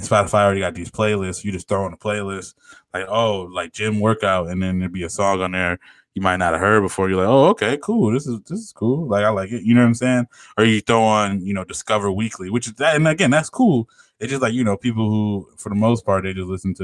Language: English